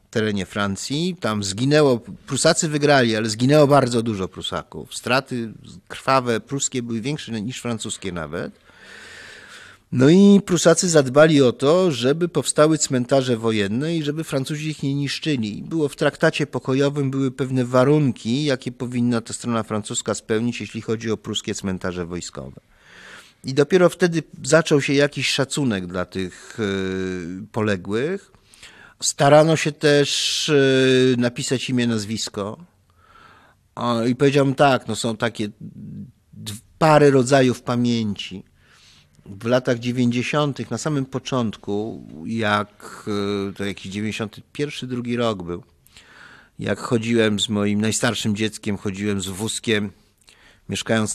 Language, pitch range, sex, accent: Polish, 100-135 Hz, male, native